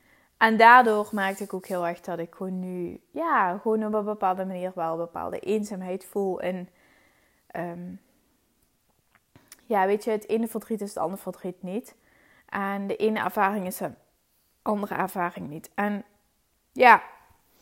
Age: 20-39